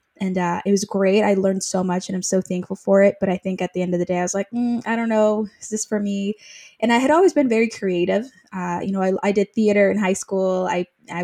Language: English